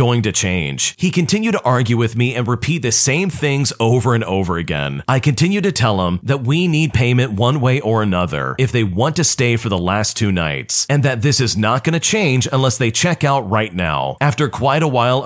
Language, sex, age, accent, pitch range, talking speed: English, male, 40-59, American, 110-145 Hz, 230 wpm